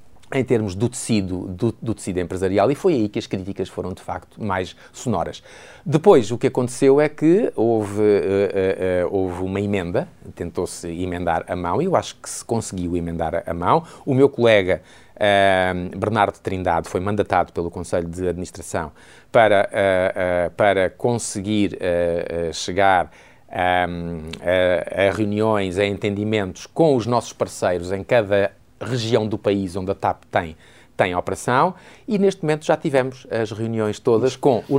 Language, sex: Portuguese, male